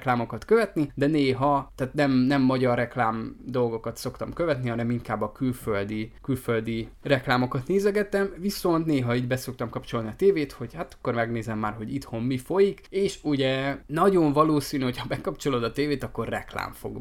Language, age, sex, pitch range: Hungarian, 20-39, male, 120-145 Hz